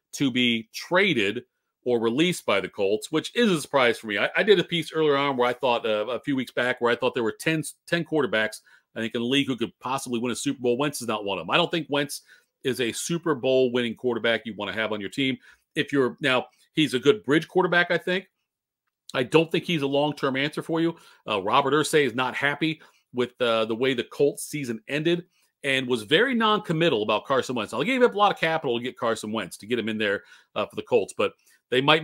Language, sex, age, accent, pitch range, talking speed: English, male, 40-59, American, 120-155 Hz, 255 wpm